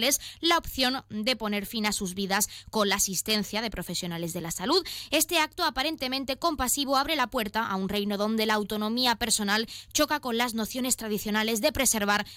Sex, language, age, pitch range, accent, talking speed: female, Spanish, 20-39, 205-270 Hz, Spanish, 180 wpm